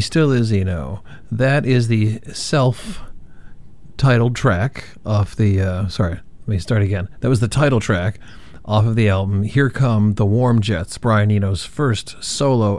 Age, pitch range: 50-69, 100-125 Hz